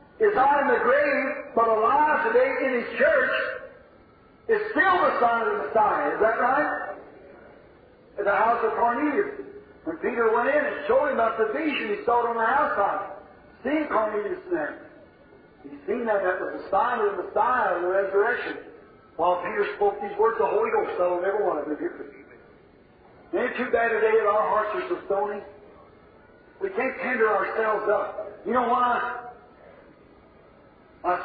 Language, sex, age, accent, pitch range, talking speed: English, male, 50-69, American, 215-290 Hz, 175 wpm